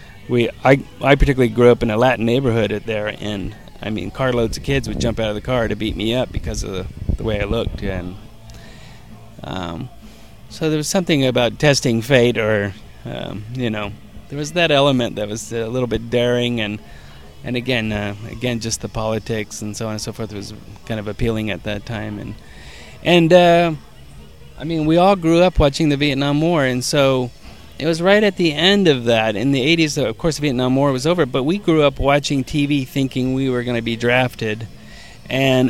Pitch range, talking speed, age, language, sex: 105-135 Hz, 210 wpm, 30-49, English, male